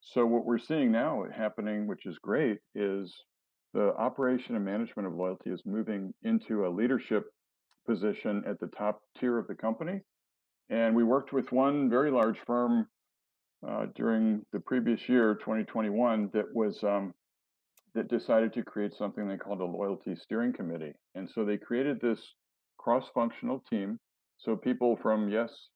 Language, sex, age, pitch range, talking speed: Polish, male, 50-69, 100-115 Hz, 160 wpm